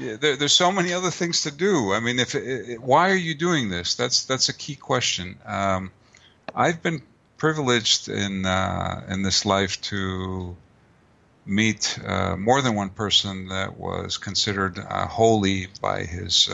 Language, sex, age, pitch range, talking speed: English, male, 50-69, 95-115 Hz, 165 wpm